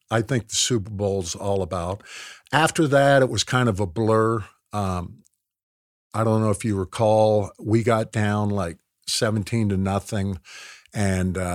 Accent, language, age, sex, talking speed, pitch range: American, English, 50-69, male, 155 wpm, 95-120 Hz